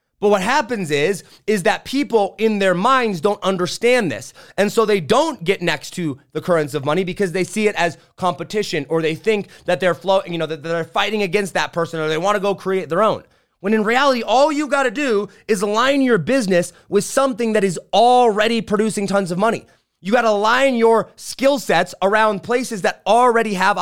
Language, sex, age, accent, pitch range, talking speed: English, male, 30-49, American, 175-235 Hz, 215 wpm